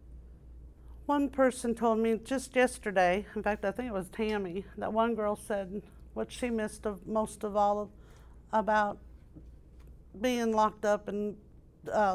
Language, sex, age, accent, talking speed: English, female, 50-69, American, 145 wpm